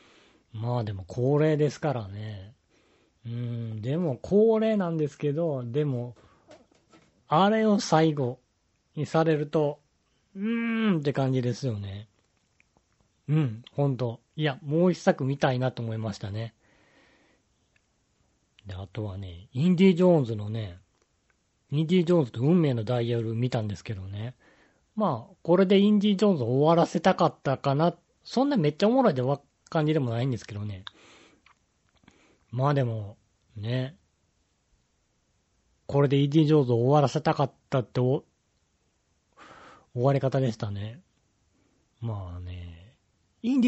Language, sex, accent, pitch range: Japanese, male, native, 105-155 Hz